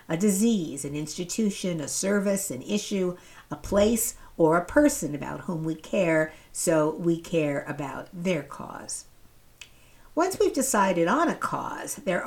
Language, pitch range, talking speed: English, 150-205 Hz, 145 wpm